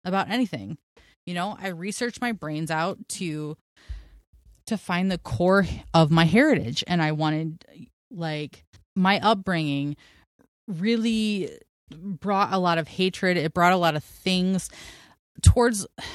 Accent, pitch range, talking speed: American, 155-195 Hz, 135 wpm